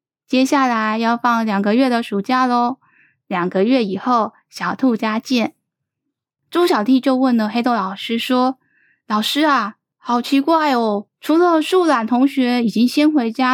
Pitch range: 210-280 Hz